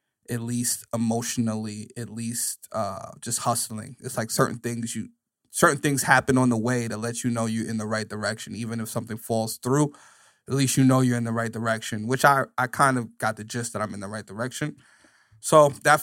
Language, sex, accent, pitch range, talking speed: English, male, American, 115-135 Hz, 215 wpm